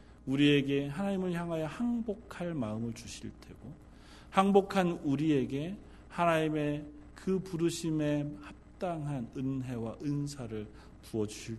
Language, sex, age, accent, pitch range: Korean, male, 40-59, native, 100-145 Hz